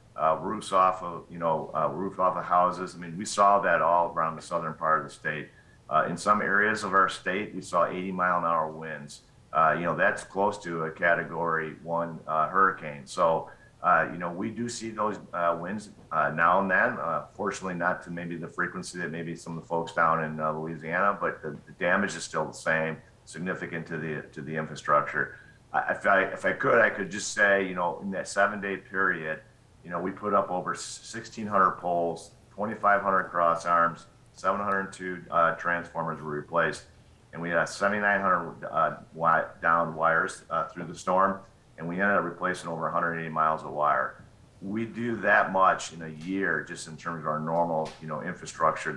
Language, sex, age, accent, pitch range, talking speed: English, male, 50-69, American, 80-95 Hz, 200 wpm